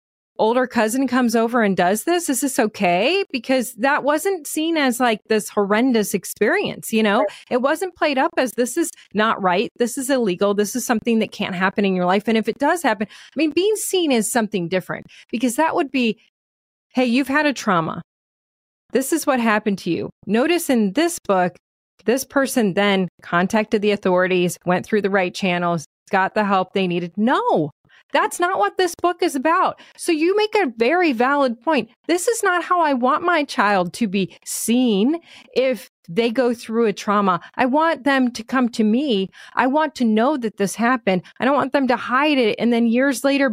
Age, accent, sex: 30-49, American, female